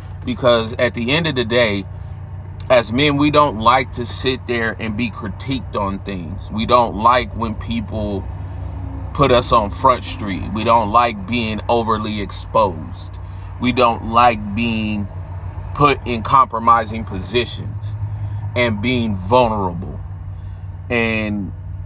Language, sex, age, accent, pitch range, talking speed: English, male, 30-49, American, 95-120 Hz, 130 wpm